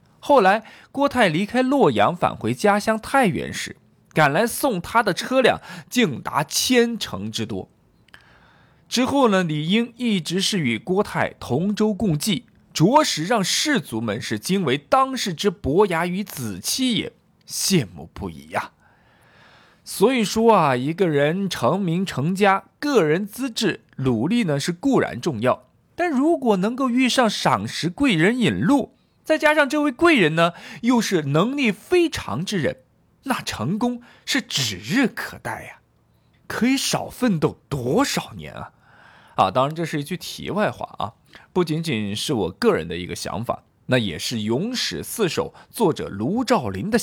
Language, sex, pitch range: Chinese, male, 155-245 Hz